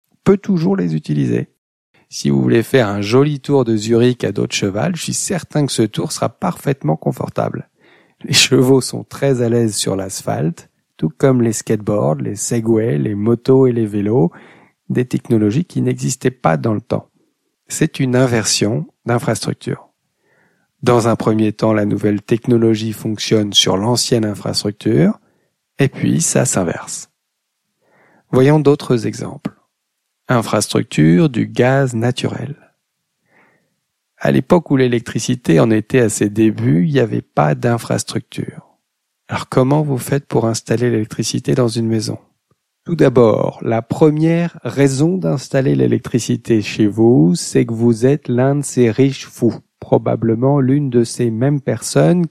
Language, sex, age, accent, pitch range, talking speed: French, male, 50-69, French, 110-135 Hz, 145 wpm